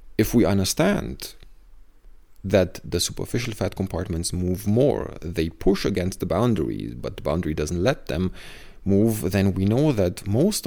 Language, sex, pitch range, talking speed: English, male, 90-110 Hz, 150 wpm